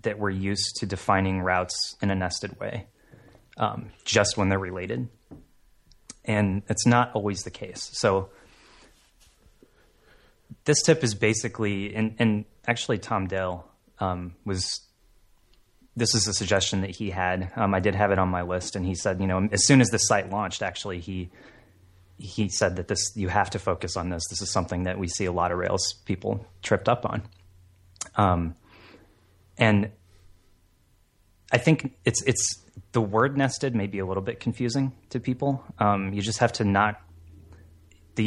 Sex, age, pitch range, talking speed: male, 30-49, 90-110 Hz, 170 wpm